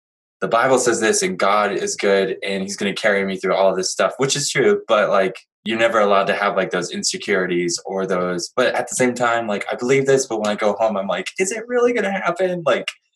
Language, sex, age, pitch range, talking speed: English, male, 20-39, 95-135 Hz, 260 wpm